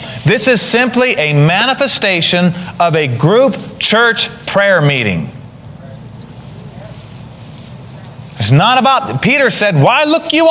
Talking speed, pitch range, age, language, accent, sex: 110 wpm, 145-205 Hz, 30-49, English, American, male